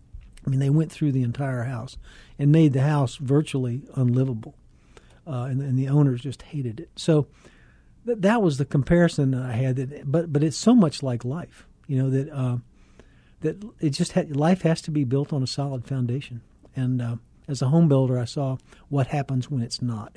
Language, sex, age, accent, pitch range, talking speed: English, male, 50-69, American, 130-150 Hz, 205 wpm